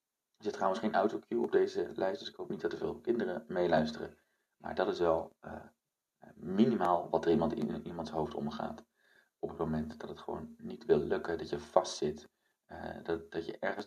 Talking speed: 210 wpm